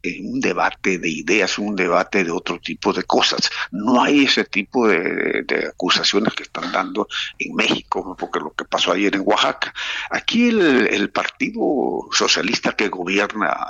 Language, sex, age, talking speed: Spanish, male, 50-69, 160 wpm